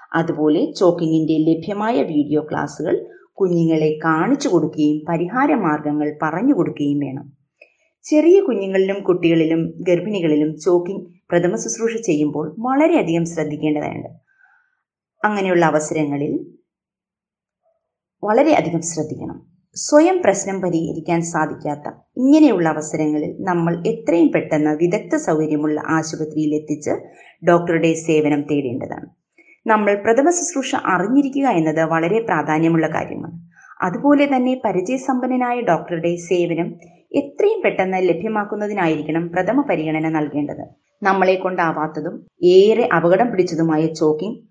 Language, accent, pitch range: Malayalam, native, 155-210 Hz